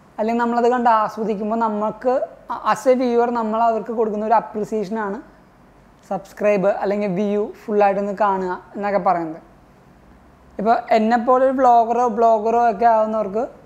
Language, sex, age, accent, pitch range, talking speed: Malayalam, female, 20-39, native, 215-245 Hz, 110 wpm